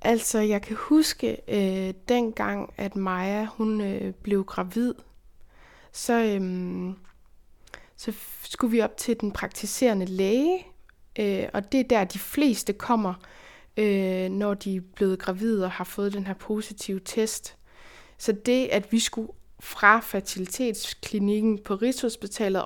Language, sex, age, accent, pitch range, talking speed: Danish, female, 20-39, native, 195-225 Hz, 120 wpm